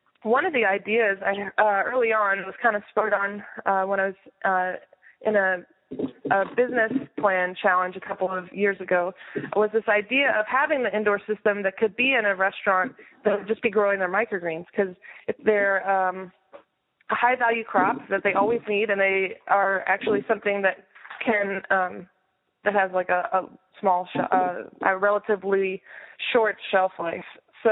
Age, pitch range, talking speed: 20-39, 195-230 Hz, 180 wpm